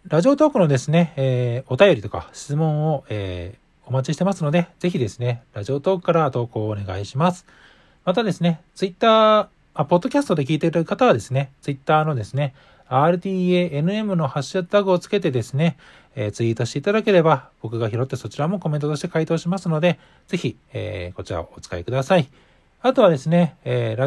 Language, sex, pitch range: Japanese, male, 125-180 Hz